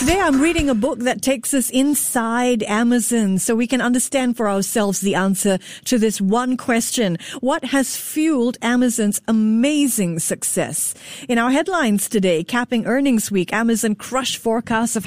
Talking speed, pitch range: 155 wpm, 205-260 Hz